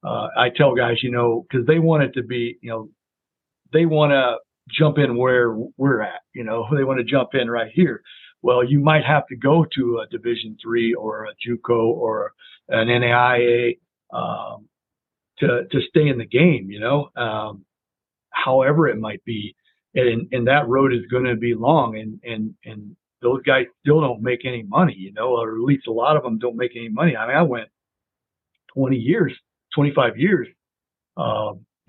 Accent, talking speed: American, 190 wpm